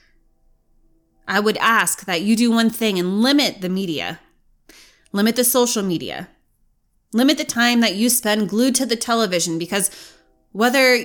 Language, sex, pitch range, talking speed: English, female, 185-245 Hz, 150 wpm